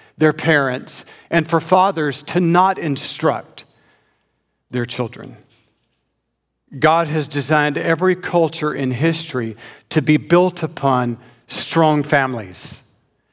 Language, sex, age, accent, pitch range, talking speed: English, male, 50-69, American, 135-170 Hz, 105 wpm